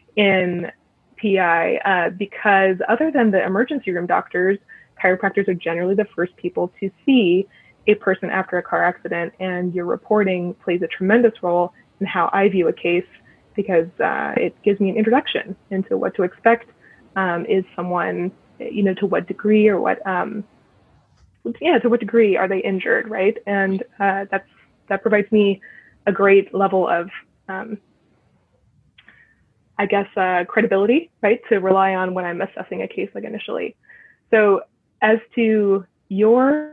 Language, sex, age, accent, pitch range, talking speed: English, female, 20-39, American, 185-220 Hz, 160 wpm